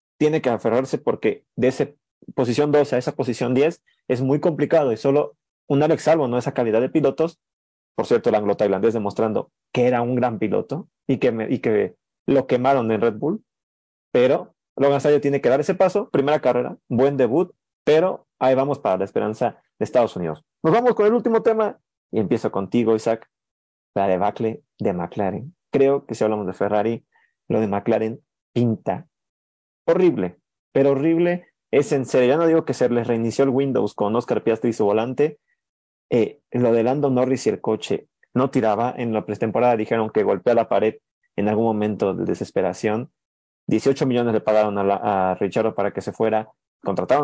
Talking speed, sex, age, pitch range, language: 185 wpm, male, 30-49, 110-140 Hz, Spanish